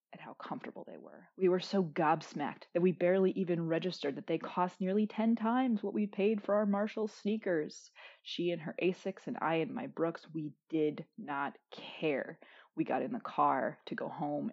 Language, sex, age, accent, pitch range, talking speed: English, female, 20-39, American, 155-195 Hz, 200 wpm